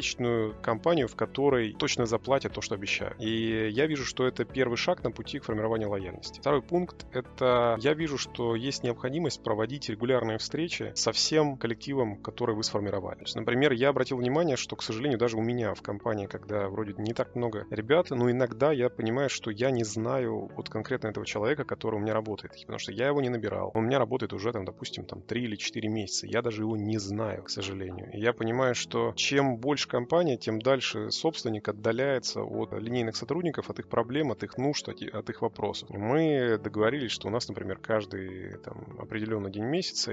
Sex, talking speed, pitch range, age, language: male, 195 wpm, 110-130 Hz, 20-39, Russian